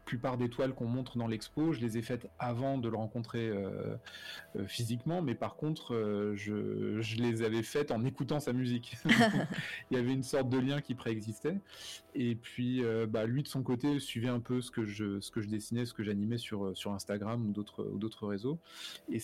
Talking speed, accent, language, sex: 220 wpm, French, French, male